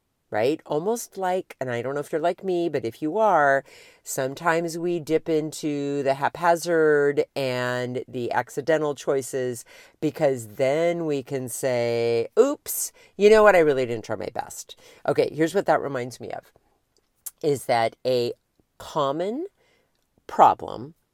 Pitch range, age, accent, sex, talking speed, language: 125-195 Hz, 50-69, American, female, 150 wpm, English